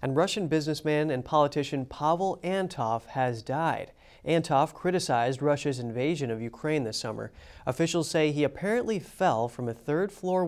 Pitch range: 130-170 Hz